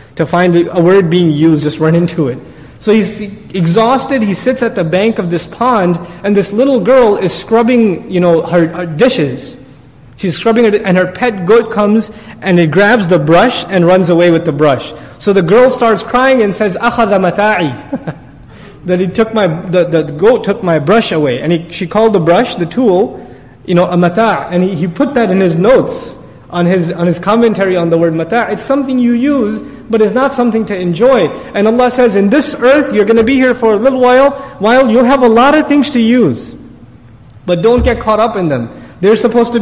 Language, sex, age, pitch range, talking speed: English, male, 30-49, 175-245 Hz, 215 wpm